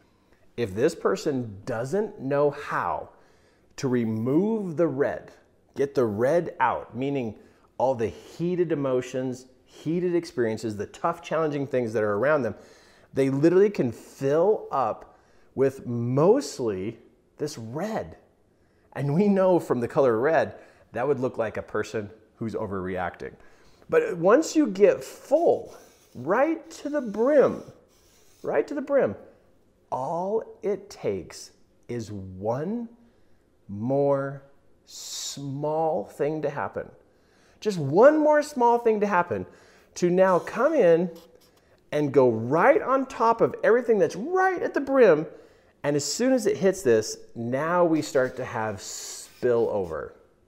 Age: 30-49